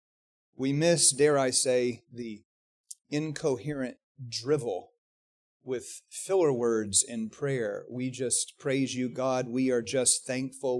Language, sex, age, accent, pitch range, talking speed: English, male, 30-49, American, 135-200 Hz, 120 wpm